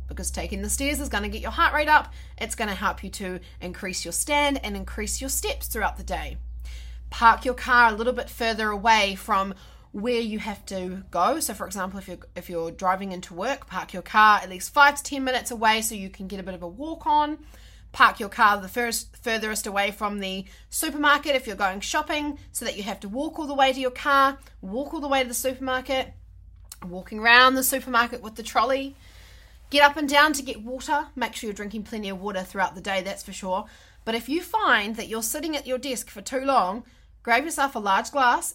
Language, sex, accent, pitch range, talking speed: English, female, Australian, 190-275 Hz, 230 wpm